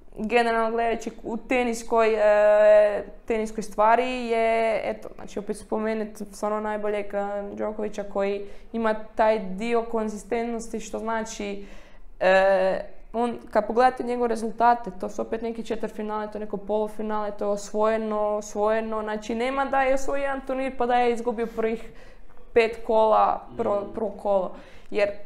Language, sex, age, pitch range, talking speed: Croatian, female, 20-39, 210-235 Hz, 140 wpm